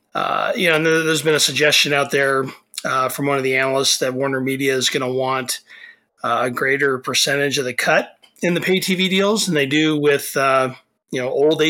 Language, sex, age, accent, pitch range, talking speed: English, male, 30-49, American, 130-155 Hz, 215 wpm